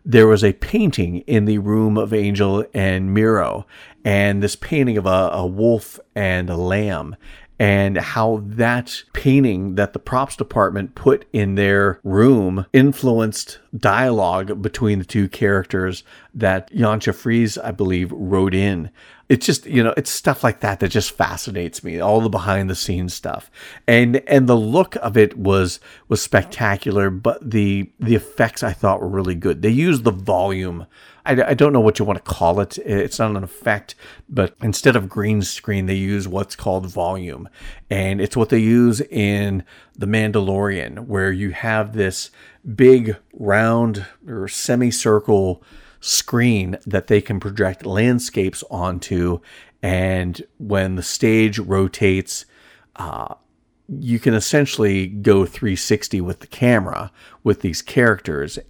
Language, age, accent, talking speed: English, 50-69, American, 150 wpm